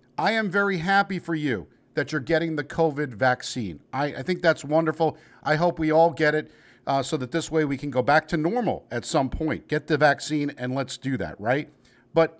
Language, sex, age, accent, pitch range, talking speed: English, male, 50-69, American, 135-185 Hz, 225 wpm